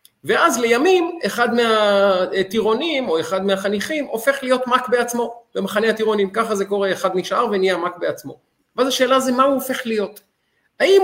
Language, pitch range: Hebrew, 185-250 Hz